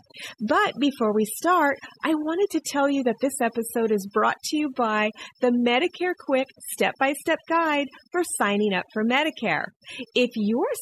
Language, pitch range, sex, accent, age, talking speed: English, 215-300 Hz, female, American, 40-59, 160 wpm